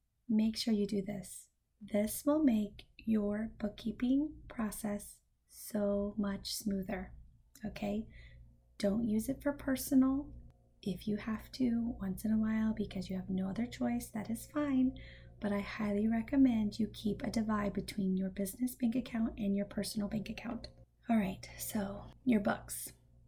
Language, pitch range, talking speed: English, 200-235 Hz, 155 wpm